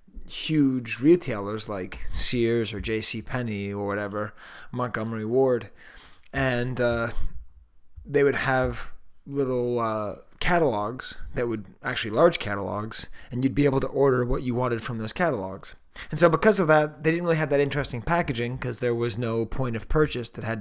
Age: 20-39